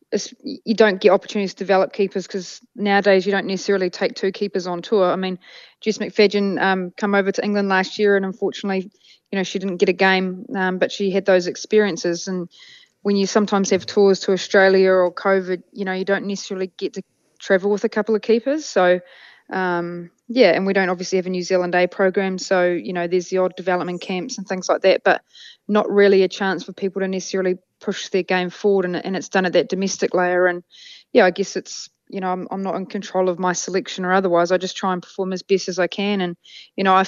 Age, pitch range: 20-39, 185-200 Hz